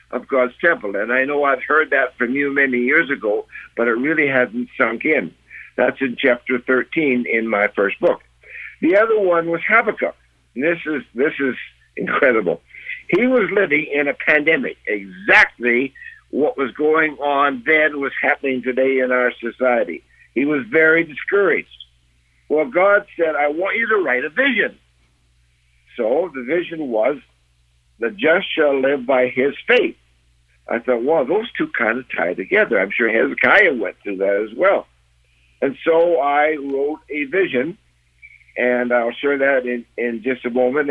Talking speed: 165 wpm